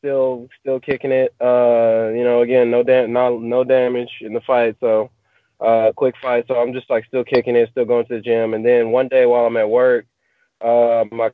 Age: 20-39